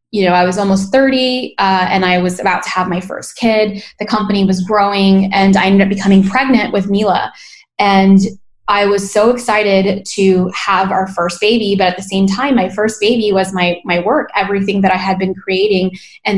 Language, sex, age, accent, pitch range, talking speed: English, female, 10-29, American, 190-225 Hz, 210 wpm